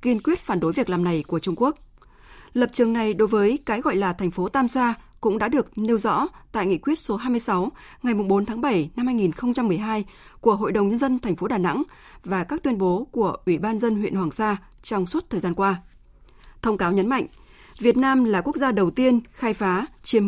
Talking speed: 230 wpm